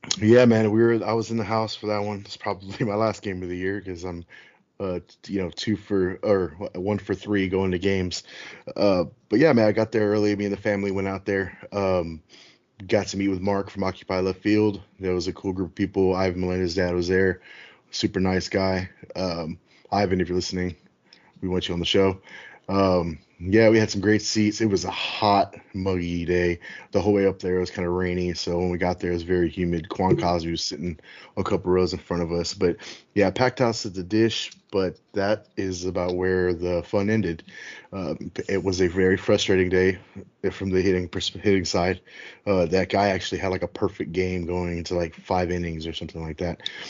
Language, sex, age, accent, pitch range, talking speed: English, male, 20-39, American, 90-100 Hz, 225 wpm